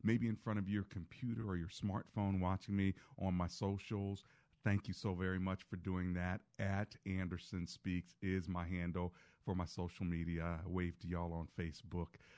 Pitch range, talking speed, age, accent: 90-125 Hz, 180 wpm, 40-59, American